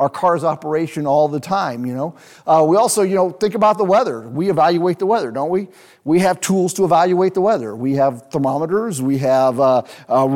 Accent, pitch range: American, 150-205 Hz